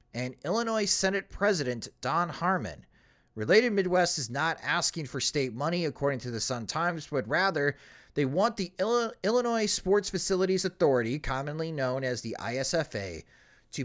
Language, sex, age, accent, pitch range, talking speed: English, male, 30-49, American, 130-190 Hz, 145 wpm